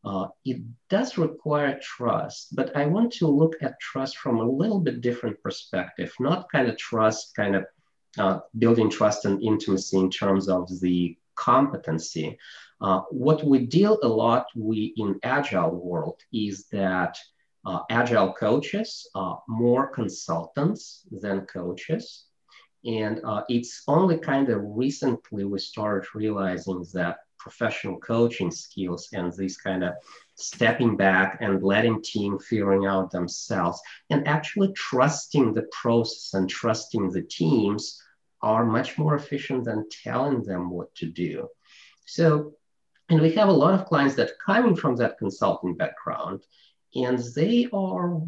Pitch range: 100-155 Hz